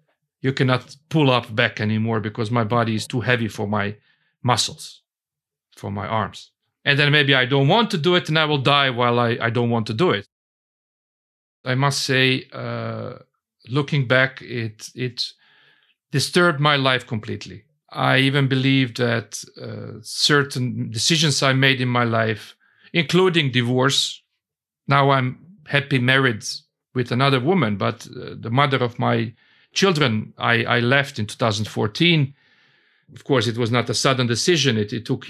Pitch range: 120-145 Hz